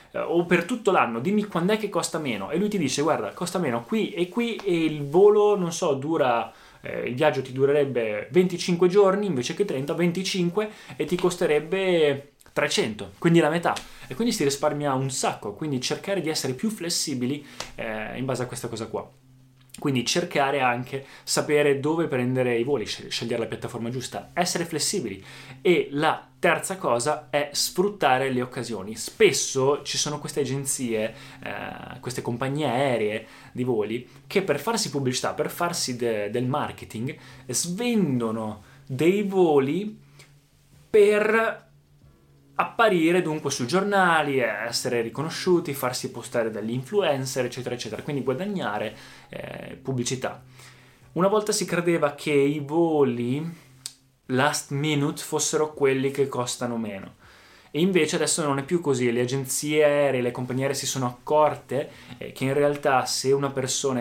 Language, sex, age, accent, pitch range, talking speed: Italian, male, 20-39, native, 125-170 Hz, 150 wpm